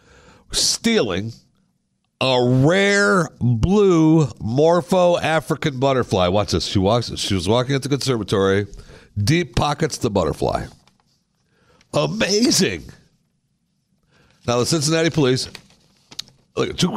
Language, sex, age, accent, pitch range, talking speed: English, male, 60-79, American, 95-140 Hz, 90 wpm